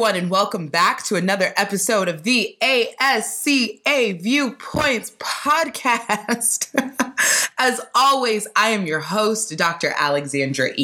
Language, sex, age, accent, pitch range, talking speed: English, female, 20-39, American, 155-220 Hz, 105 wpm